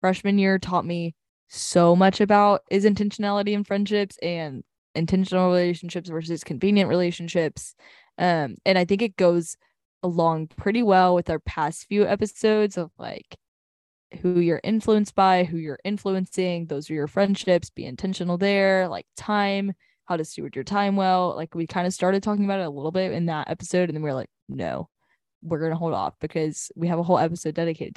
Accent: American